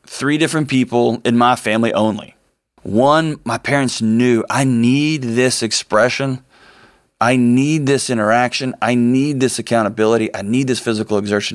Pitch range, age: 110-130 Hz, 30-49